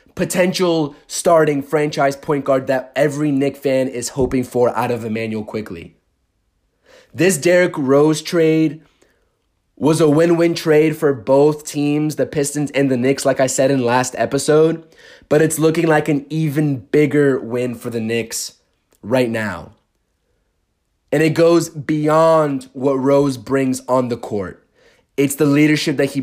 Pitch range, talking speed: 120-155 Hz, 150 wpm